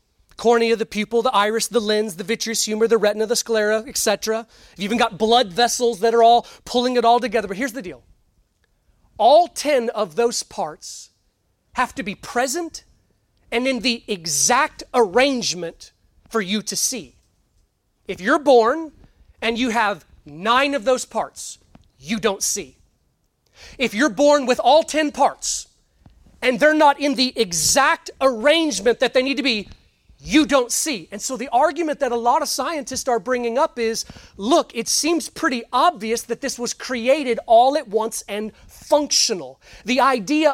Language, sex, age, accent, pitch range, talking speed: English, male, 30-49, American, 225-275 Hz, 165 wpm